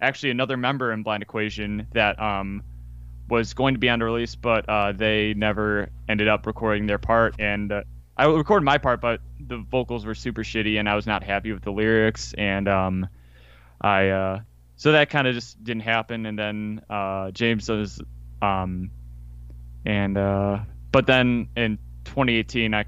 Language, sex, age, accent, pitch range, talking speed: English, male, 20-39, American, 95-120 Hz, 180 wpm